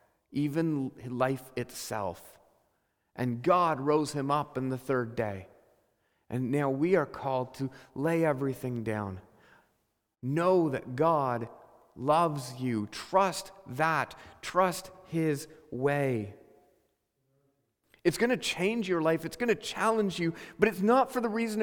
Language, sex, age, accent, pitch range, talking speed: English, male, 40-59, American, 125-175 Hz, 135 wpm